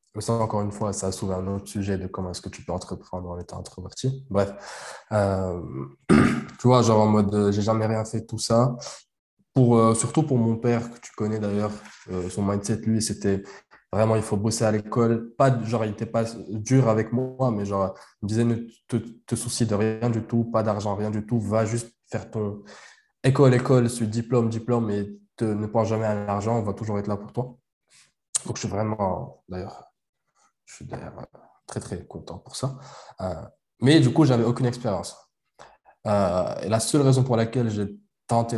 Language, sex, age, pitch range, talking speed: French, male, 20-39, 100-120 Hz, 210 wpm